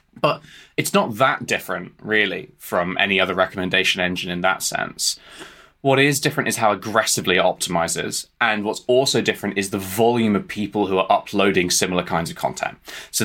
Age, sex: 20-39, male